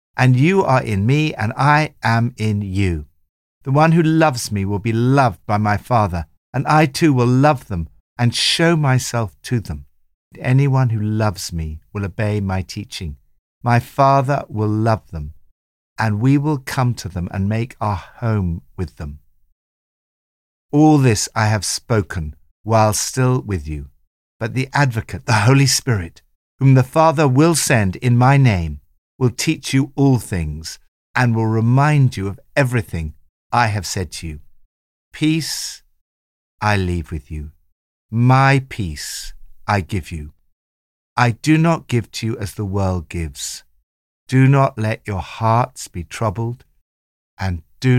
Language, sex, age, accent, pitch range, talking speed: English, male, 60-79, British, 80-125 Hz, 155 wpm